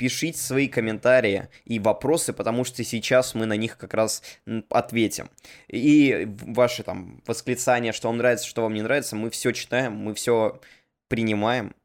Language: Russian